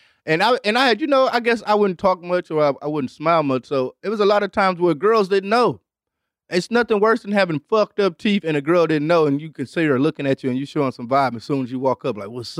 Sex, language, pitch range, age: male, English, 135-200 Hz, 30-49